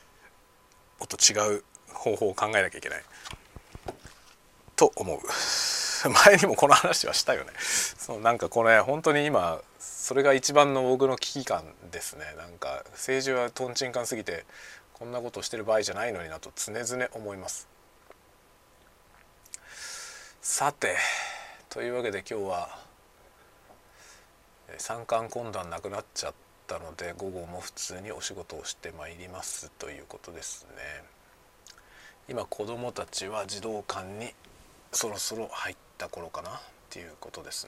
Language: Japanese